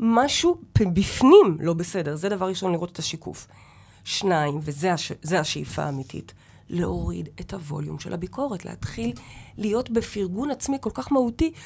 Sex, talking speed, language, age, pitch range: female, 140 wpm, Hebrew, 30-49, 175-250 Hz